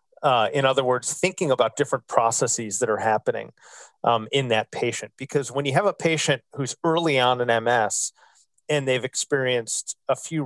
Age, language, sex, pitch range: 30-49, English, male, 120-145 Hz